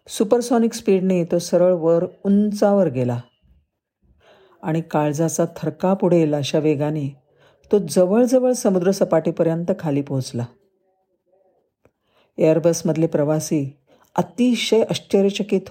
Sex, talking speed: female, 85 wpm